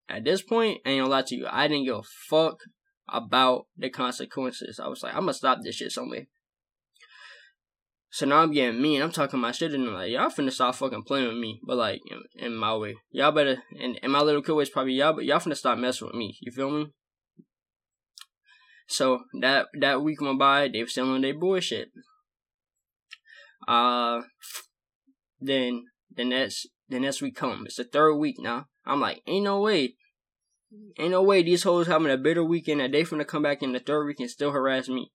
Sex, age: male, 10-29